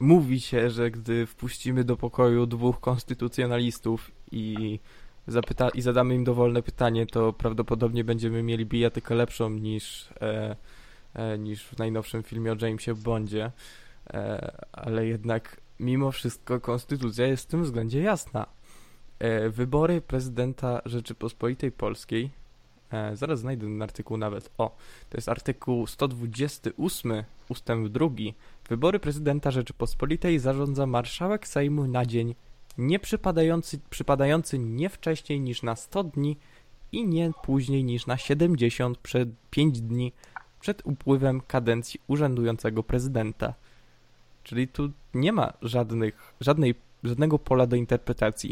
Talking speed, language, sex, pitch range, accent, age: 115 wpm, Polish, male, 115-135 Hz, native, 20-39